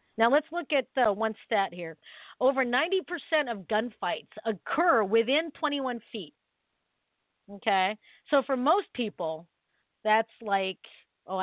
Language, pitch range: English, 200-275 Hz